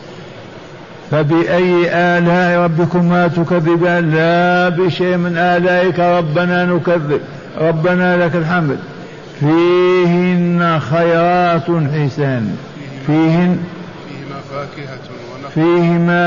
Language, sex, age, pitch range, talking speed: Arabic, male, 60-79, 155-175 Hz, 65 wpm